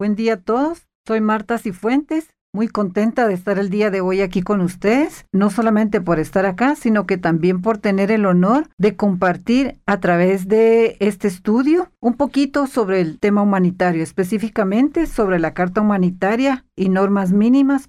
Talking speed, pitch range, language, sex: 170 wpm, 185-230 Hz, Spanish, female